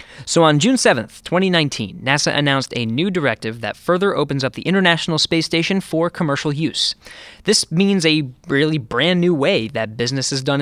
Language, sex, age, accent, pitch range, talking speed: English, male, 20-39, American, 130-170 Hz, 180 wpm